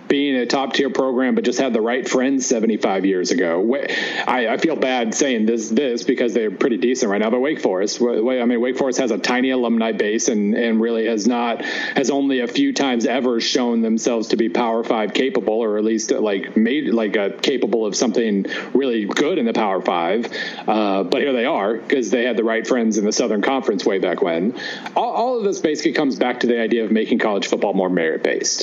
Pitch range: 115-140 Hz